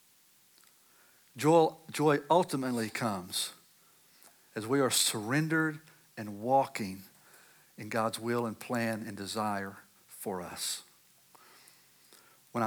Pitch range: 110-130 Hz